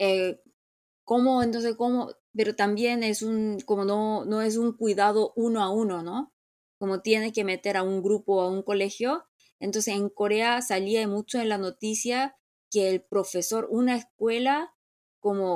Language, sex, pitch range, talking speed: Spanish, female, 185-235 Hz, 165 wpm